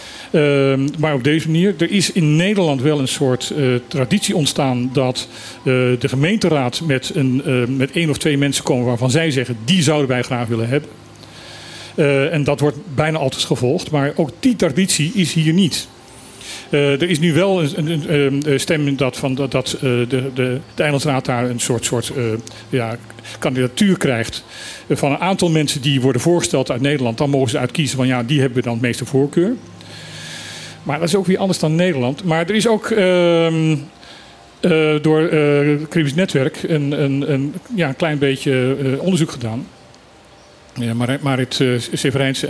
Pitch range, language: 130-165 Hz, Dutch